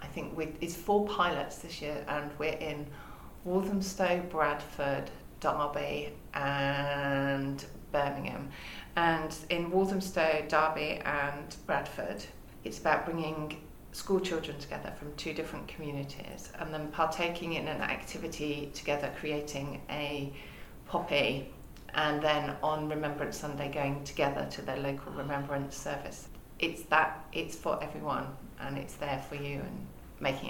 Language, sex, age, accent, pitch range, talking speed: English, female, 30-49, British, 140-165 Hz, 130 wpm